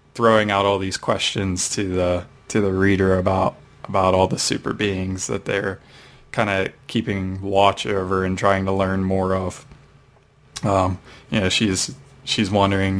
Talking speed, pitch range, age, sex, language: 160 wpm, 95-110 Hz, 20-39, male, English